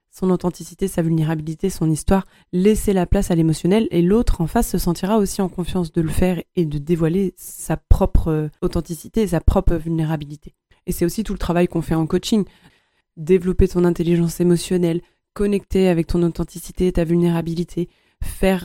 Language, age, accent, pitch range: French, 20-39, French, 165-190 Hz